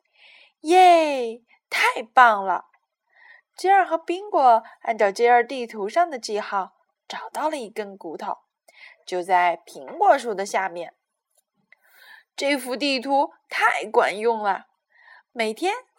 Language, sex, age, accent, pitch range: Chinese, female, 20-39, native, 225-345 Hz